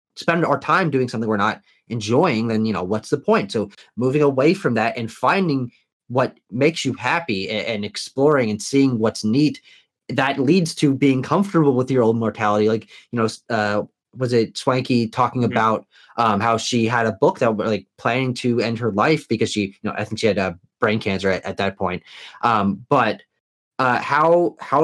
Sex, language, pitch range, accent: male, English, 110-165 Hz, American